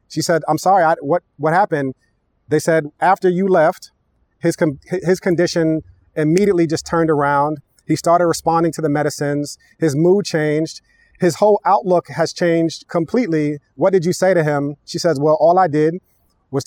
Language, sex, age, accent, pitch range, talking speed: English, male, 30-49, American, 135-165 Hz, 175 wpm